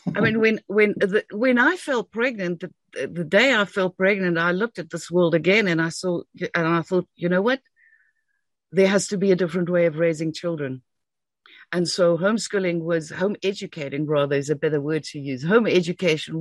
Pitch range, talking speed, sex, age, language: 170-225 Hz, 200 wpm, female, 60-79, English